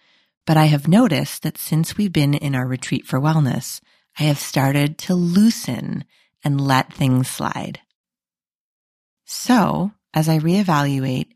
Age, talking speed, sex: 30-49, 135 wpm, female